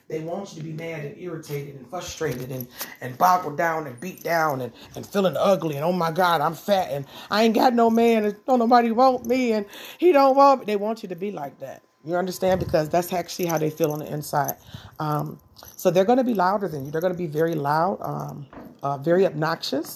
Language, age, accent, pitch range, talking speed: English, 40-59, American, 165-215 Hz, 240 wpm